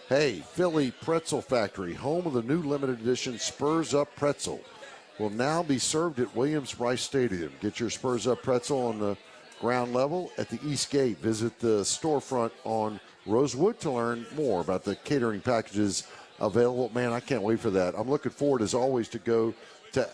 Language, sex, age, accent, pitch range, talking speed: English, male, 50-69, American, 115-145 Hz, 180 wpm